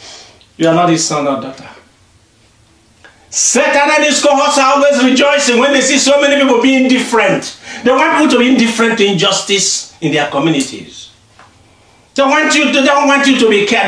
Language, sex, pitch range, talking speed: English, male, 170-275 Hz, 175 wpm